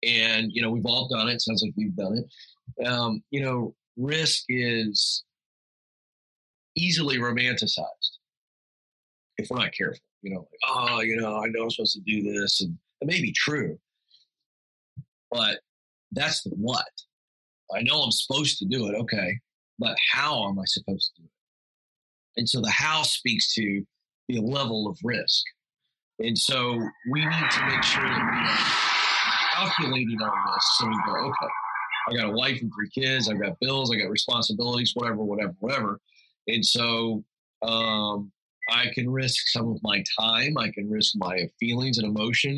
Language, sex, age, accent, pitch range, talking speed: English, male, 40-59, American, 110-135 Hz, 170 wpm